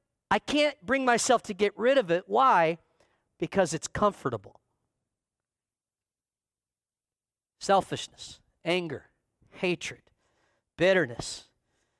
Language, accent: English, American